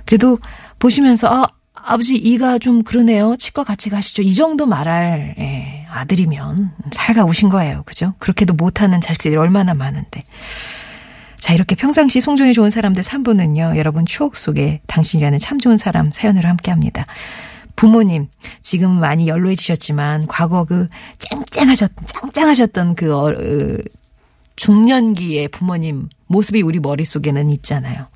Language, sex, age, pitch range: Korean, female, 40-59, 155-225 Hz